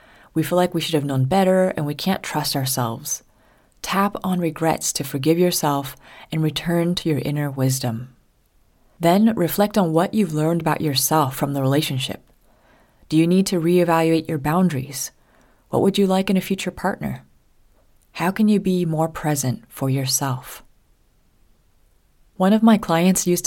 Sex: female